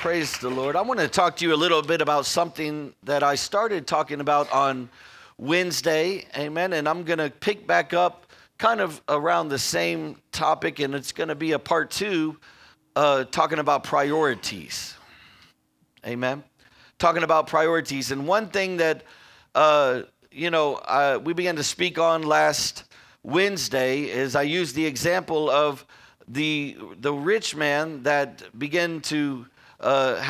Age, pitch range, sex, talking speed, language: 40-59, 135-165 Hz, male, 160 wpm, English